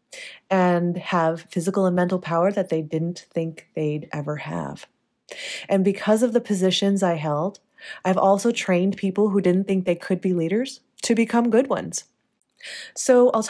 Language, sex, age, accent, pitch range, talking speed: English, female, 30-49, American, 160-200 Hz, 165 wpm